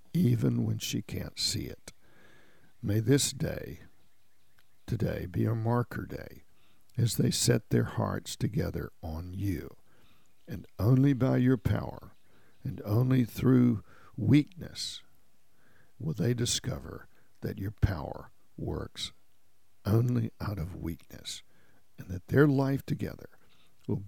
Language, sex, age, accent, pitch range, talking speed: English, male, 60-79, American, 95-125 Hz, 120 wpm